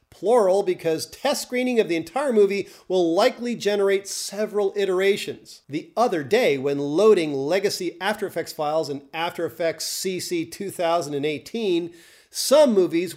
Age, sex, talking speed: 40-59, male, 130 wpm